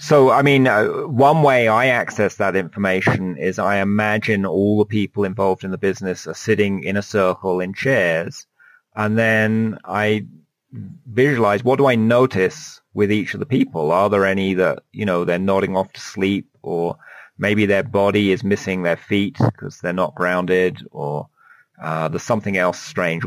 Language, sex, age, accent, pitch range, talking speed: English, male, 30-49, British, 95-130 Hz, 180 wpm